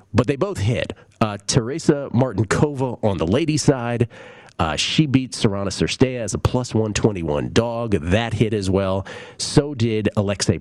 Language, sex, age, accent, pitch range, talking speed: English, male, 40-59, American, 95-130 Hz, 155 wpm